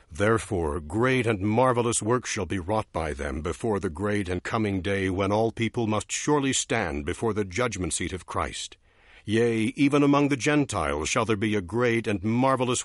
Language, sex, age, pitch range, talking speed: English, male, 60-79, 95-125 Hz, 185 wpm